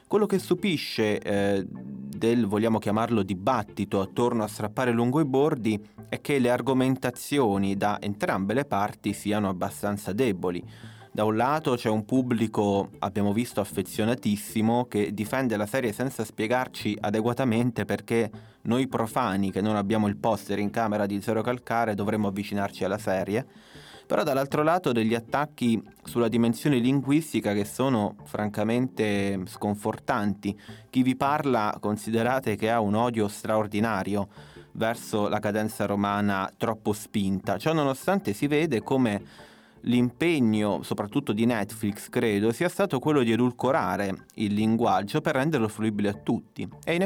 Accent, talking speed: native, 140 wpm